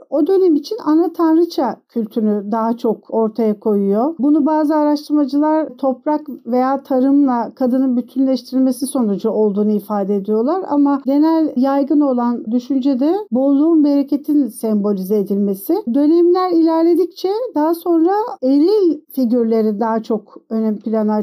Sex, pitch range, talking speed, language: female, 245-310 Hz, 115 wpm, Turkish